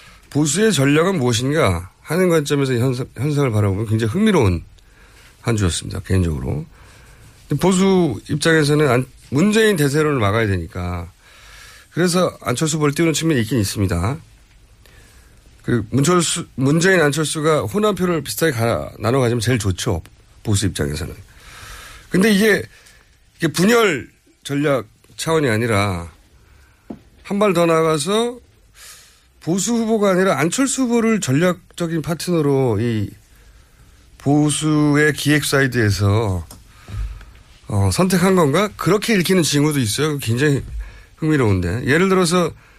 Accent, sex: native, male